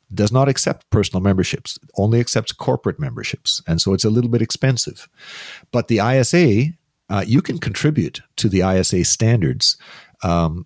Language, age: English, 50-69